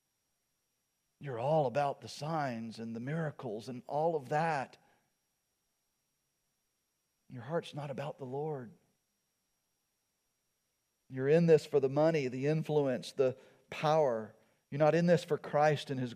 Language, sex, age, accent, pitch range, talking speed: English, male, 40-59, American, 125-155 Hz, 135 wpm